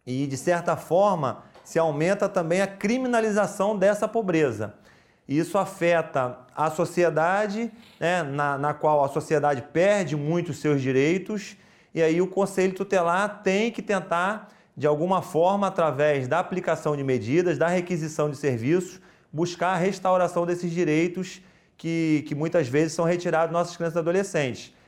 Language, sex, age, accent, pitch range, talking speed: Portuguese, male, 30-49, Brazilian, 145-175 Hz, 145 wpm